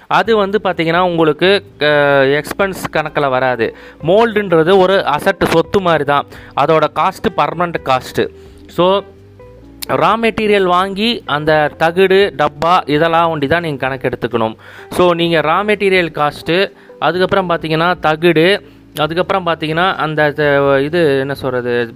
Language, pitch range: Tamil, 150-190 Hz